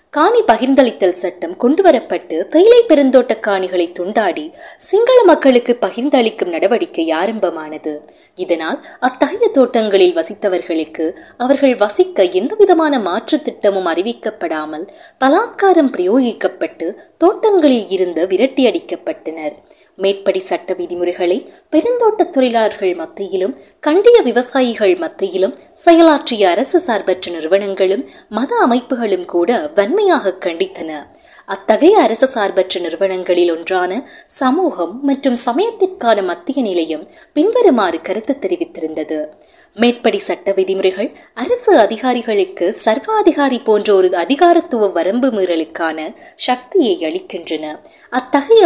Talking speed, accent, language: 90 wpm, native, Tamil